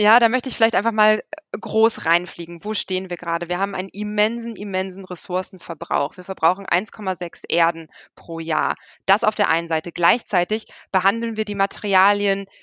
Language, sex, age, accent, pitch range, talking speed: German, female, 20-39, German, 180-215 Hz, 165 wpm